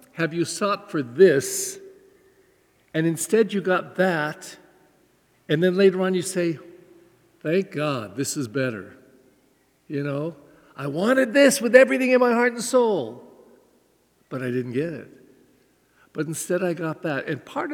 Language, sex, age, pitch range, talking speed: English, male, 60-79, 160-235 Hz, 150 wpm